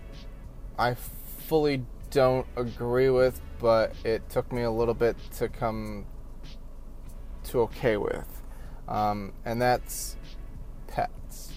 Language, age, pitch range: English, 20-39, 110-130 Hz